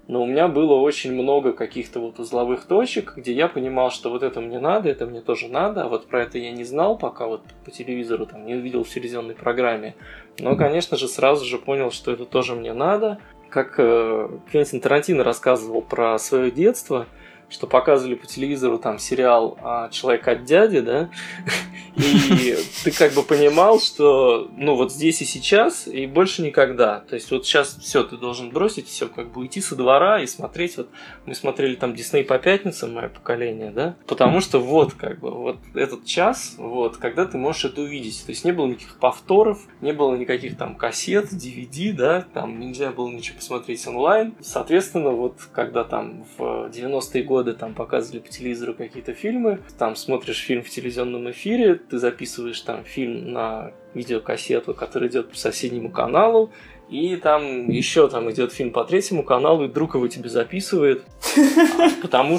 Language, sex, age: Russian, male, 20-39